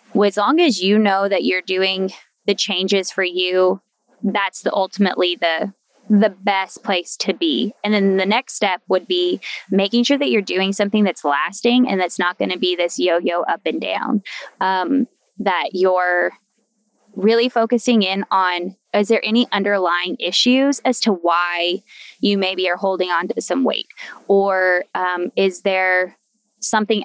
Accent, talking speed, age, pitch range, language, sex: American, 170 wpm, 20-39, 185-220 Hz, English, female